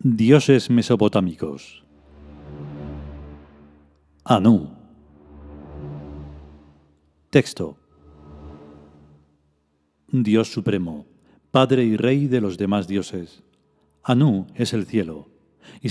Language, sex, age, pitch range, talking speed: Spanish, male, 40-59, 85-130 Hz, 70 wpm